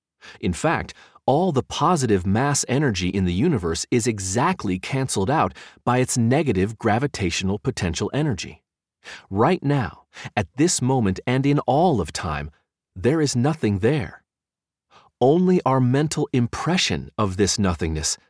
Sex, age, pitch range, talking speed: male, 40-59, 95-140 Hz, 135 wpm